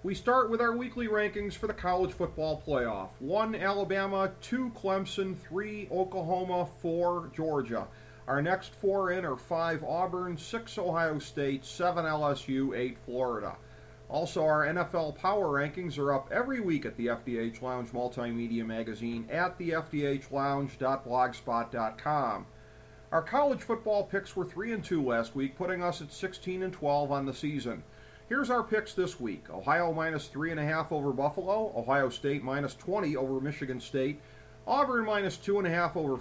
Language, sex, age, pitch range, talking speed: English, male, 40-59, 130-185 Hz, 150 wpm